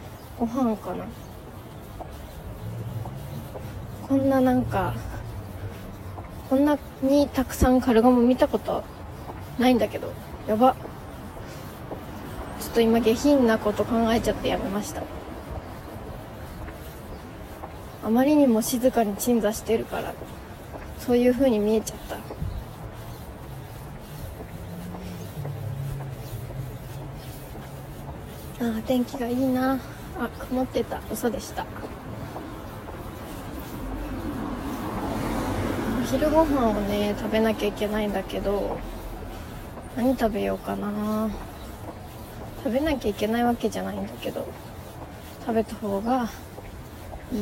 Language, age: Japanese, 20-39